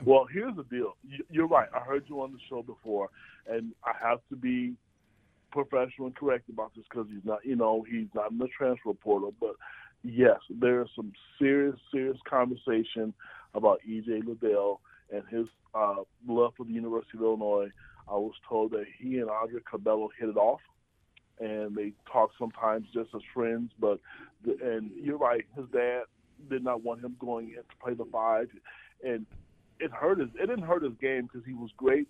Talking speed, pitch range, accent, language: 180 wpm, 110-125 Hz, American, English